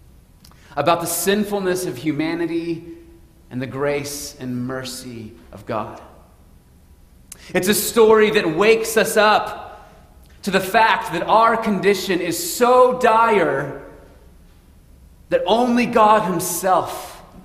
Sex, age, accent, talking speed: male, 30-49, American, 110 wpm